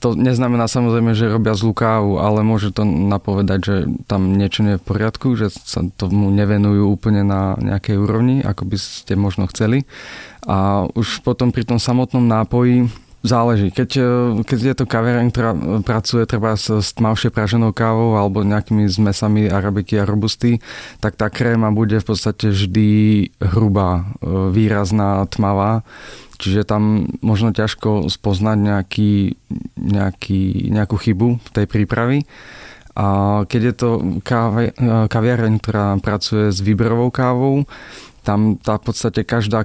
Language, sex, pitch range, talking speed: Slovak, male, 100-115 Hz, 140 wpm